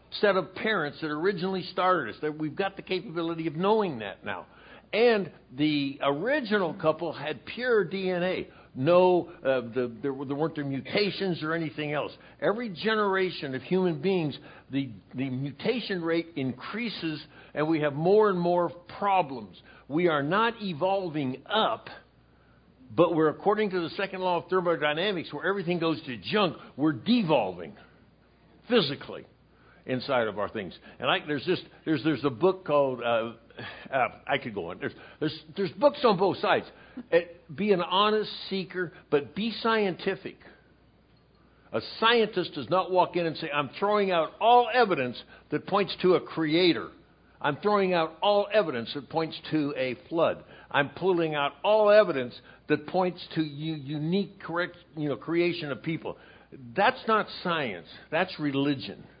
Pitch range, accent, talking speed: 150-195 Hz, American, 160 wpm